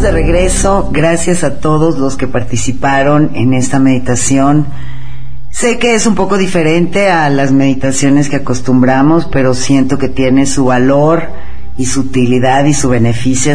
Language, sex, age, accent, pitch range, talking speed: Spanish, female, 40-59, Mexican, 125-160 Hz, 150 wpm